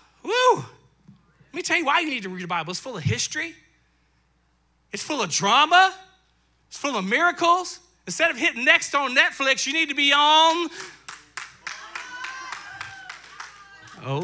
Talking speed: 150 wpm